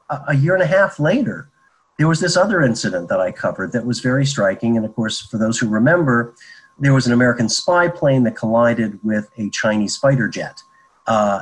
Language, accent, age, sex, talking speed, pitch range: English, American, 40-59, male, 205 wpm, 110-140 Hz